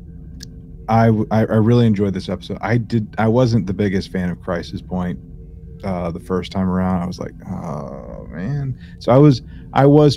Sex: male